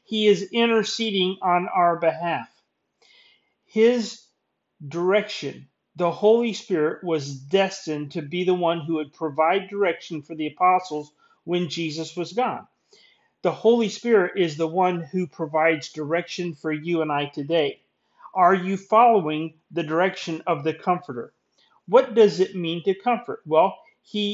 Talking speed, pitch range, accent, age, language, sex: 145 wpm, 160-200 Hz, American, 40-59, English, male